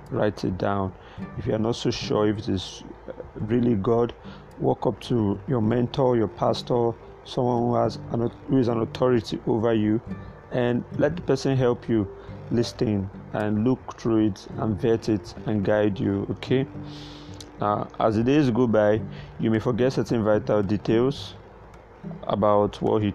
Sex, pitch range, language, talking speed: male, 105-120 Hz, English, 165 wpm